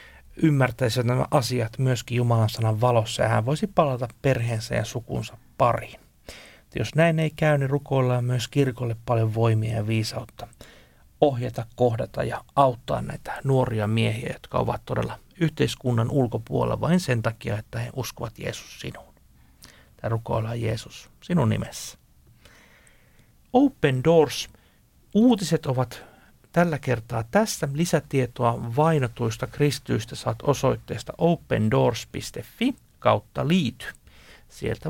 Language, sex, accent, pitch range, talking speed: Finnish, male, native, 115-150 Hz, 120 wpm